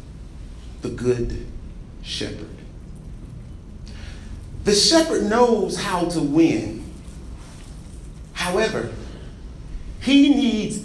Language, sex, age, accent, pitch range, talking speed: English, male, 40-59, American, 105-165 Hz, 65 wpm